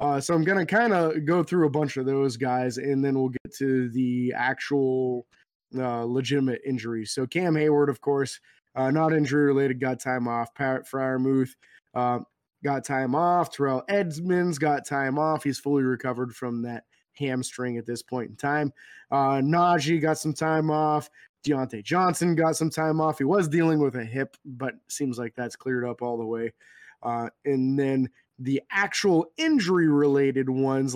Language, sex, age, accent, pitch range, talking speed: English, male, 20-39, American, 130-160 Hz, 175 wpm